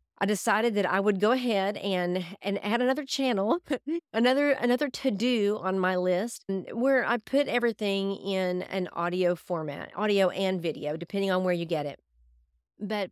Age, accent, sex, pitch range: 40-59, American, female, 180-235 Hz